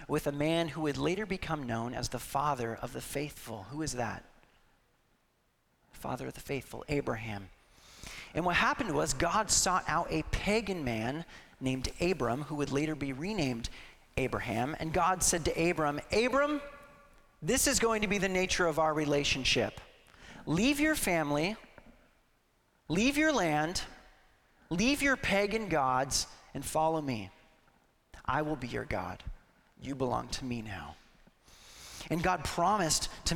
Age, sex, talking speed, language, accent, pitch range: 40-59, male, 150 wpm, English, American, 125-180 Hz